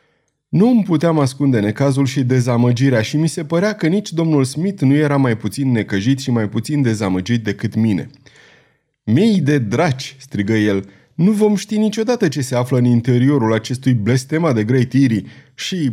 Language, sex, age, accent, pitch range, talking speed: Romanian, male, 30-49, native, 120-165 Hz, 170 wpm